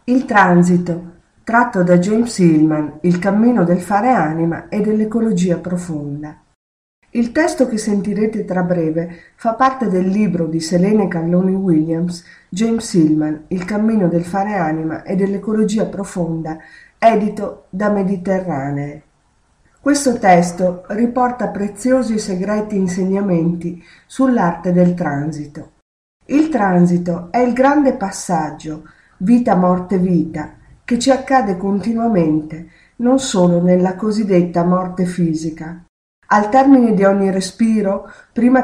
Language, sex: Italian, female